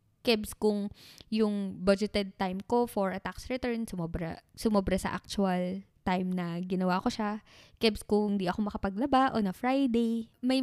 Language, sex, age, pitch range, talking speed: Filipino, female, 20-39, 195-255 Hz, 160 wpm